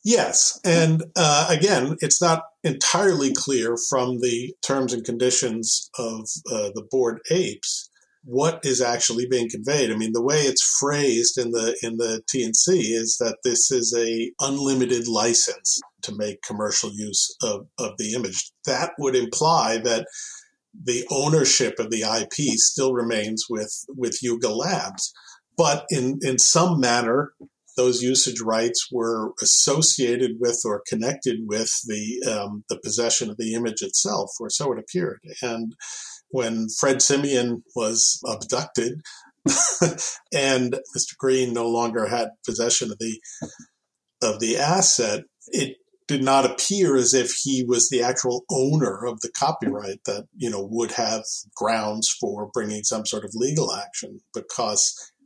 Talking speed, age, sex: 150 wpm, 50-69, male